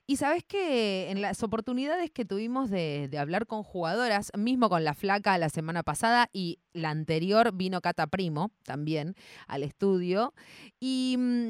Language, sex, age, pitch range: Spanish, female, 30-49, 160-250 Hz